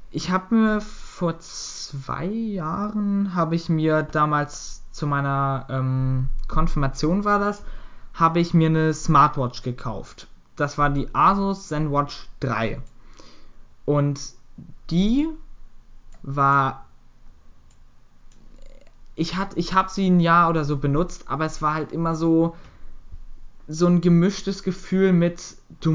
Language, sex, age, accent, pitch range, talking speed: German, male, 20-39, German, 145-170 Hz, 120 wpm